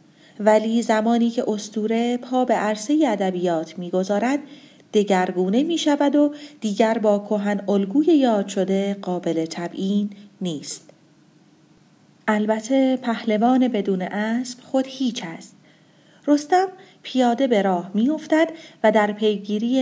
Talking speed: 110 wpm